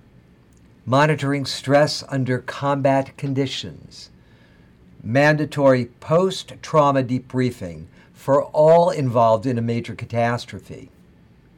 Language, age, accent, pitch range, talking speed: English, 60-79, American, 110-140 Hz, 80 wpm